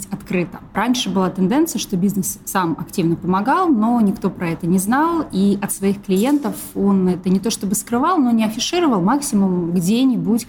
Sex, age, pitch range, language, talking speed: female, 20-39, 180-210 Hz, Russian, 170 wpm